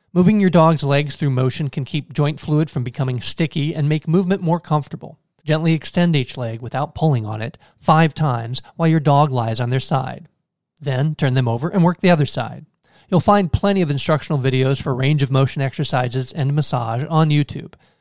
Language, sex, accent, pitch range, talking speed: English, male, American, 135-165 Hz, 195 wpm